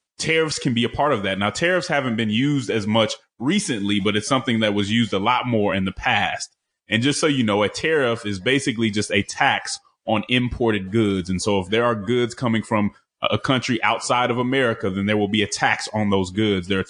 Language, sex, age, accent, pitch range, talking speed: English, male, 30-49, American, 105-130 Hz, 235 wpm